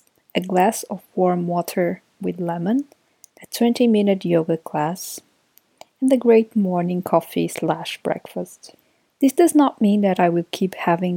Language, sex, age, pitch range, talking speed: English, female, 20-39, 175-215 Hz, 145 wpm